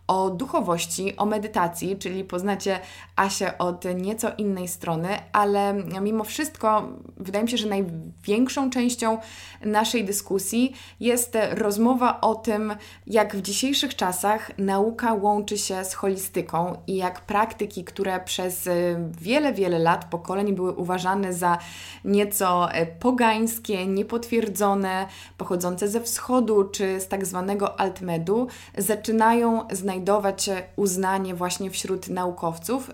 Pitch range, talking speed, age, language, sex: 180-215 Hz, 120 wpm, 20-39, Polish, female